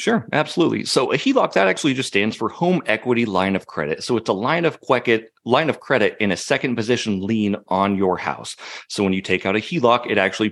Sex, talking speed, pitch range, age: male, 220 wpm, 95-115 Hz, 30-49